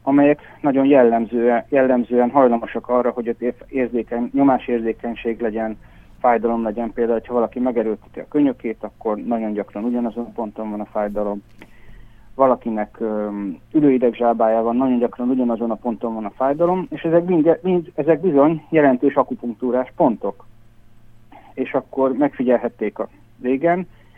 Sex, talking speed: male, 135 wpm